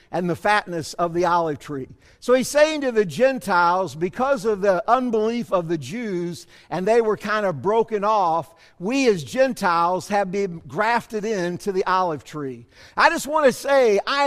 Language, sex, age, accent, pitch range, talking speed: English, male, 50-69, American, 190-260 Hz, 175 wpm